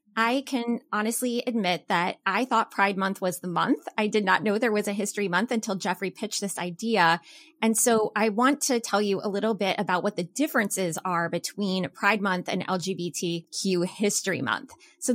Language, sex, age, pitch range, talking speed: English, female, 20-39, 180-235 Hz, 195 wpm